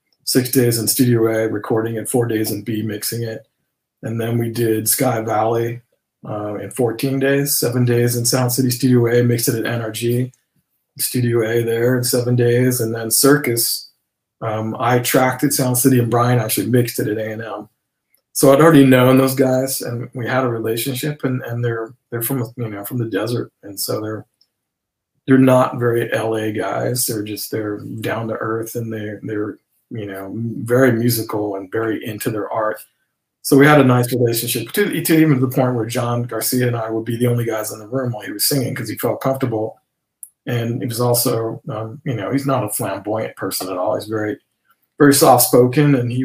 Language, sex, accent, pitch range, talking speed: English, male, American, 110-130 Hz, 200 wpm